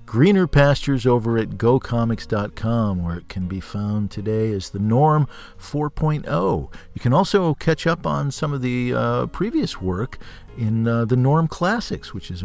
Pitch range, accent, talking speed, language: 95-135 Hz, American, 165 wpm, English